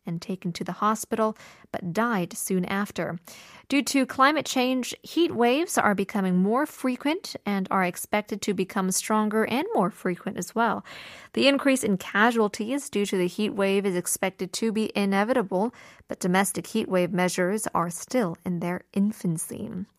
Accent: American